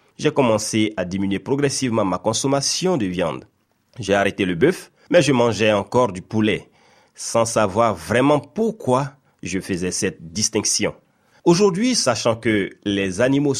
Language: French